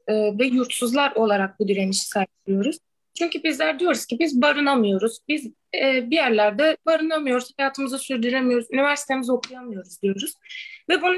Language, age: Turkish, 20-39